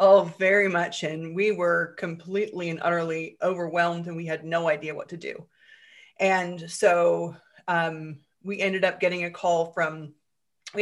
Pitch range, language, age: 165-200 Hz, English, 20-39